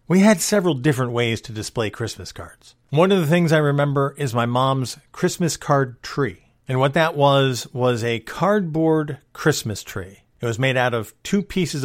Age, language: 50-69, English